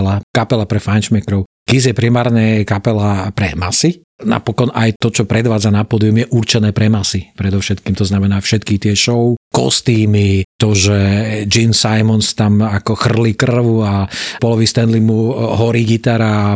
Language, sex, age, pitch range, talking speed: Slovak, male, 40-59, 105-130 Hz, 155 wpm